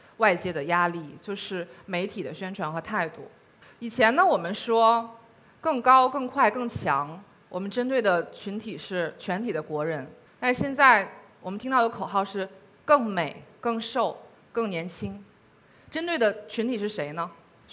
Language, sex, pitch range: Chinese, female, 180-235 Hz